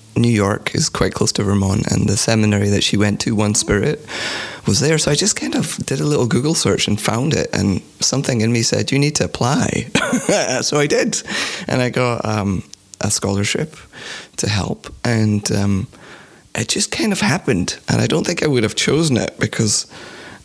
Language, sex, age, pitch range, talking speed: English, male, 30-49, 105-130 Hz, 200 wpm